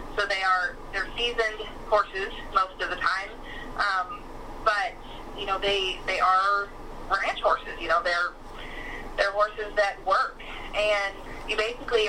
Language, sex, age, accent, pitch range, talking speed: English, female, 20-39, American, 195-230 Hz, 145 wpm